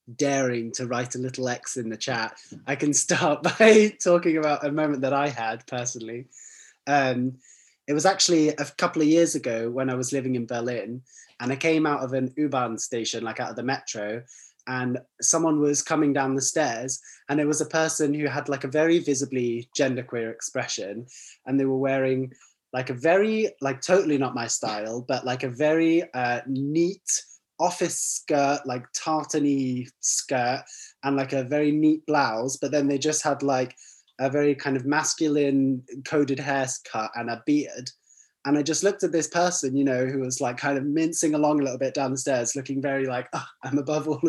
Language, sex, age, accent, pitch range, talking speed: Swedish, male, 20-39, British, 130-155 Hz, 190 wpm